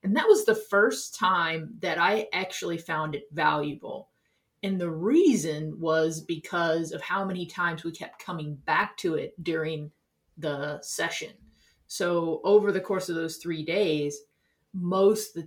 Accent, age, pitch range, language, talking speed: American, 30-49, 155-195 Hz, English, 160 wpm